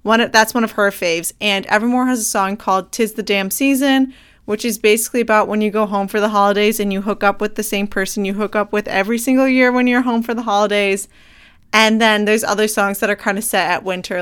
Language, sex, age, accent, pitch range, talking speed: English, female, 20-39, American, 200-235 Hz, 250 wpm